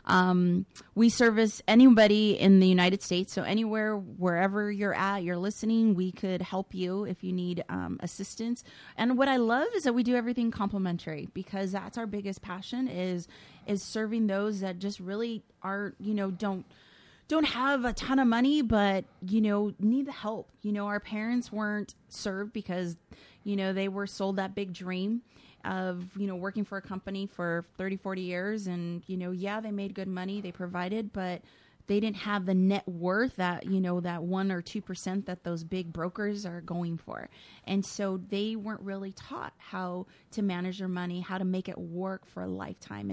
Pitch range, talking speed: 185-215 Hz, 190 wpm